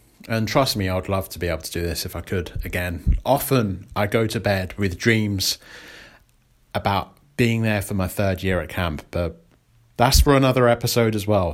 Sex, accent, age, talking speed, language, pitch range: male, British, 30-49, 200 wpm, English, 100-125 Hz